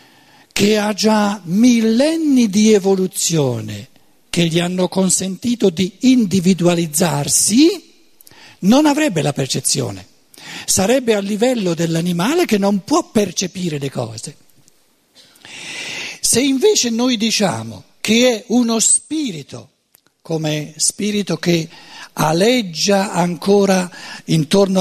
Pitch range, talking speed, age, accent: 175-245 Hz, 95 wpm, 60-79, native